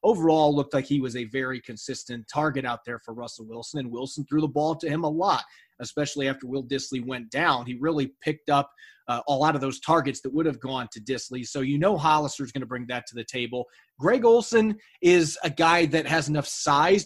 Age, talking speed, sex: 30-49, 230 wpm, male